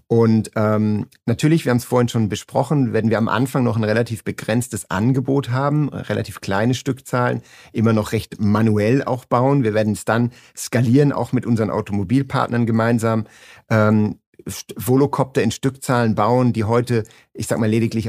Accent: German